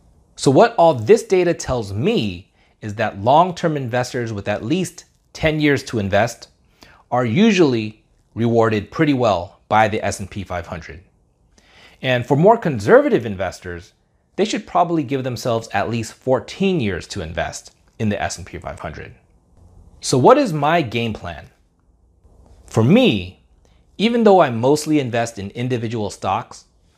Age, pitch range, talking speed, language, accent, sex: 30-49, 90-140 Hz, 140 wpm, English, American, male